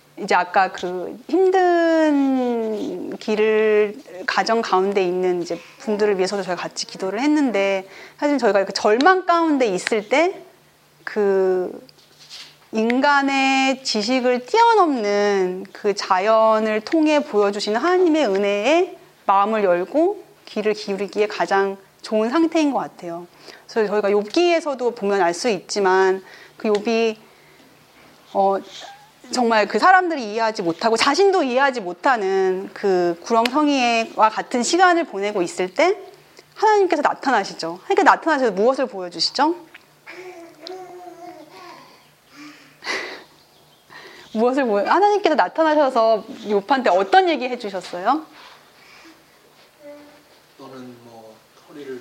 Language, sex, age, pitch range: Korean, female, 30-49, 195-310 Hz